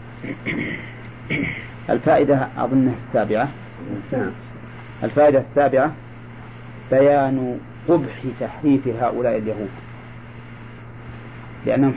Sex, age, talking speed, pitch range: male, 40-59, 55 wpm, 115-140 Hz